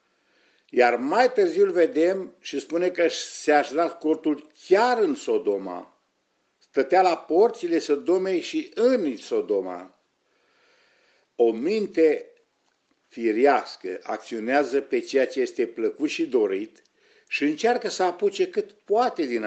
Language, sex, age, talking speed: Romanian, male, 50-69, 115 wpm